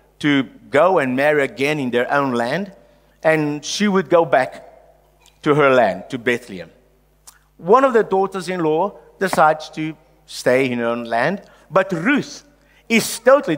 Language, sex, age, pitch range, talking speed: English, male, 50-69, 160-260 Hz, 160 wpm